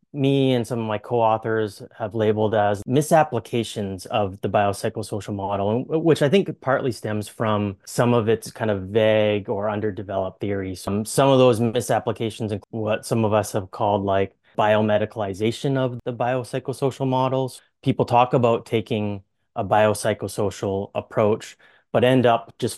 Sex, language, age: male, English, 20-39